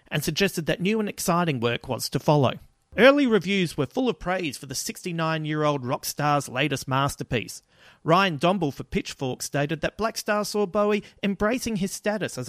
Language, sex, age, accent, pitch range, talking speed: English, male, 40-59, Australian, 140-185 Hz, 175 wpm